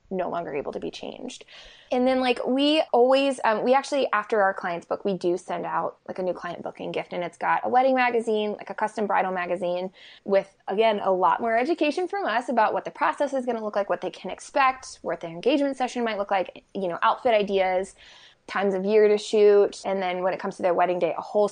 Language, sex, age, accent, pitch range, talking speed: English, female, 20-39, American, 180-235 Hz, 245 wpm